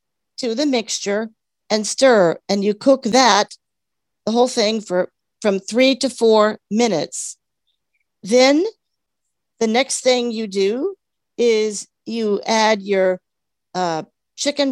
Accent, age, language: American, 50-69, English